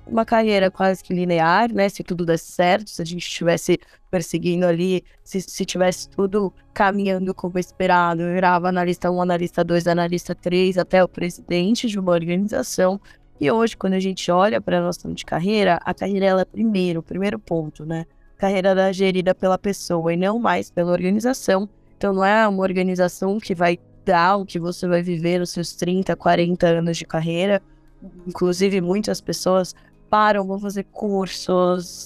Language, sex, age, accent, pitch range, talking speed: Portuguese, female, 10-29, Brazilian, 175-190 Hz, 180 wpm